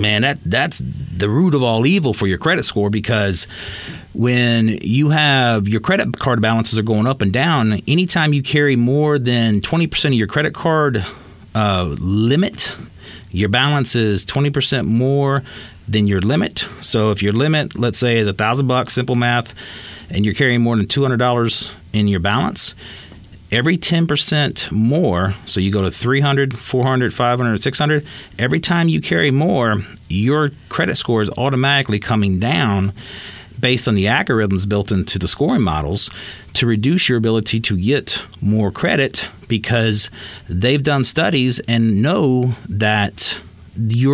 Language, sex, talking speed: English, male, 155 wpm